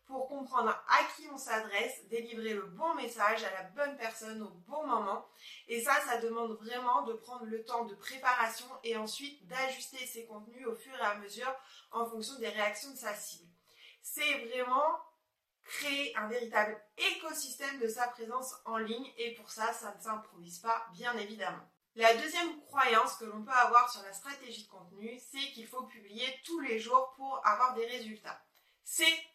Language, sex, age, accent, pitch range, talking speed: French, female, 20-39, French, 220-270 Hz, 180 wpm